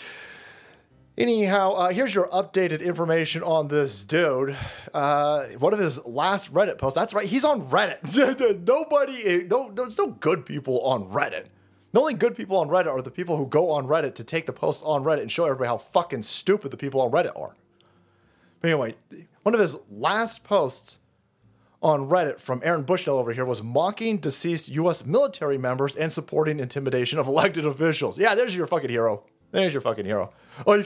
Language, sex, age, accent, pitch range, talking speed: English, male, 30-49, American, 145-215 Hz, 185 wpm